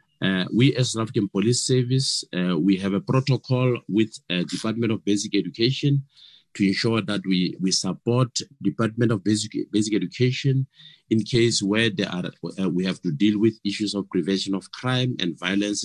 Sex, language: male, English